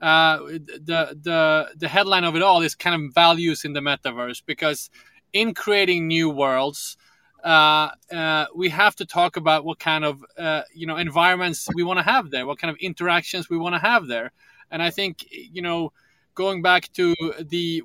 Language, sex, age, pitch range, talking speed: English, male, 20-39, 150-175 Hz, 190 wpm